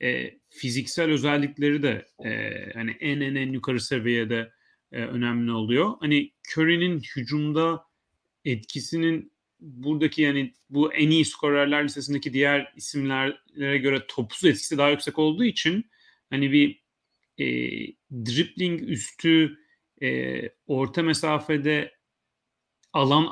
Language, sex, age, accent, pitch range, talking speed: Turkish, male, 30-49, native, 125-165 Hz, 110 wpm